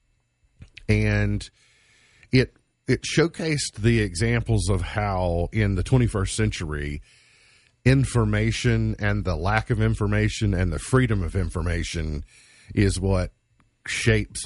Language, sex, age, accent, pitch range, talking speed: English, male, 50-69, American, 95-120 Hz, 110 wpm